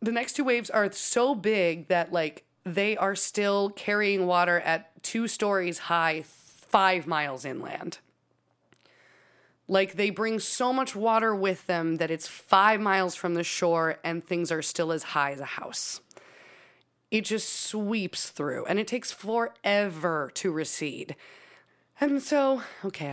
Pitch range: 165-205 Hz